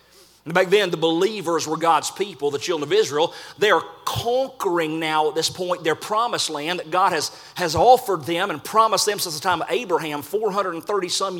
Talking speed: 190 wpm